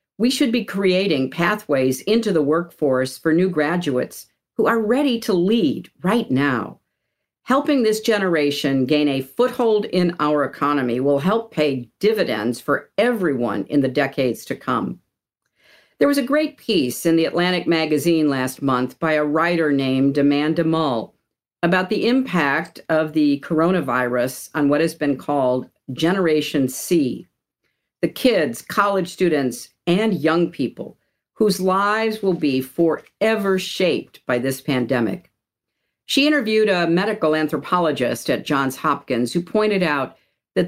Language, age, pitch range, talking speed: English, 50-69, 140-195 Hz, 140 wpm